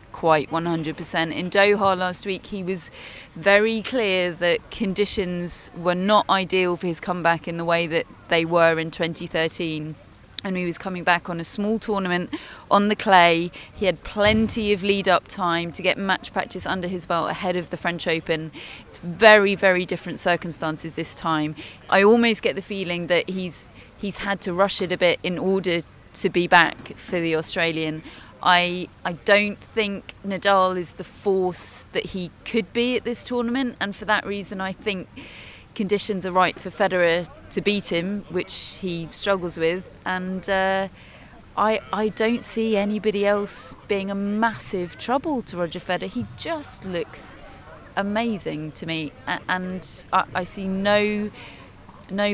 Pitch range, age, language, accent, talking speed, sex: 170-200 Hz, 30-49, English, British, 165 wpm, female